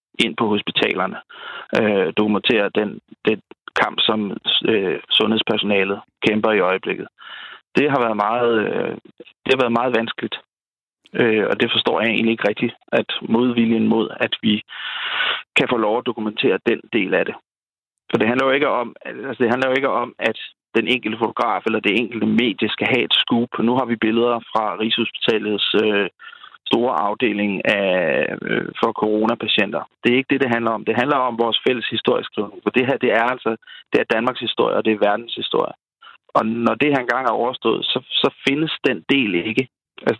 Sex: male